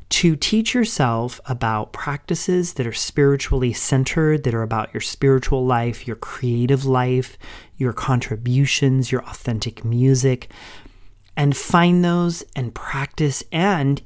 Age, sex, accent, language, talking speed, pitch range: 40-59, male, American, English, 125 wpm, 120-150 Hz